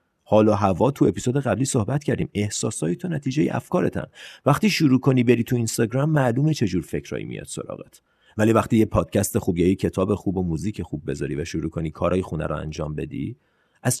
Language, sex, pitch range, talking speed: Persian, male, 95-140 Hz, 185 wpm